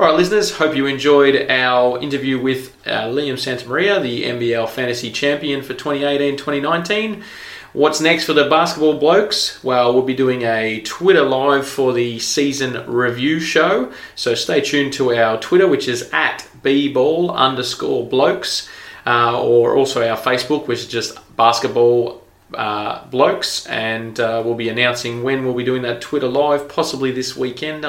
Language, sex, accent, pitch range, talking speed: English, male, Australian, 120-145 Hz, 160 wpm